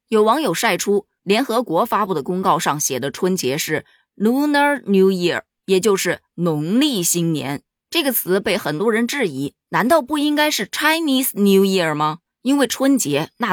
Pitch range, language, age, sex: 155-255 Hz, Chinese, 20-39, female